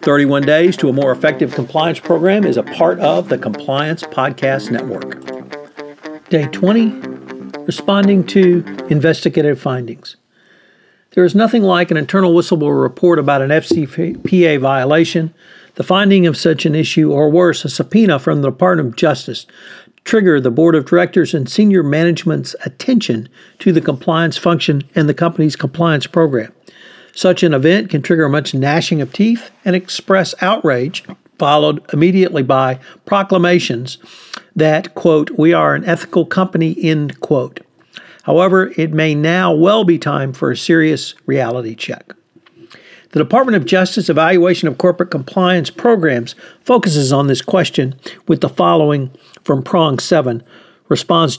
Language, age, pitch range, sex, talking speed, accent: English, 60-79, 145-180 Hz, male, 145 wpm, American